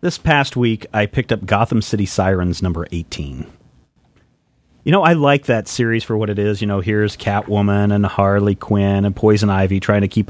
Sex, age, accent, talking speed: male, 30-49, American, 200 wpm